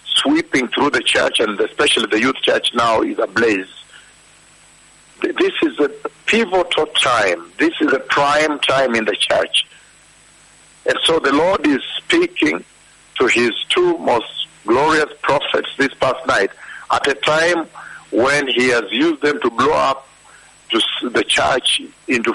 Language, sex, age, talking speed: English, male, 60-79, 145 wpm